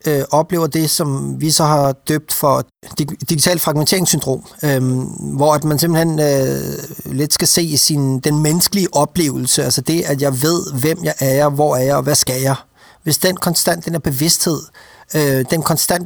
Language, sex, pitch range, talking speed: Danish, male, 140-170 Hz, 180 wpm